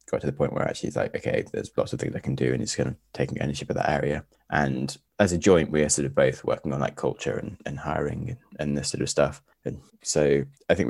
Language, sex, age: English, male, 20-39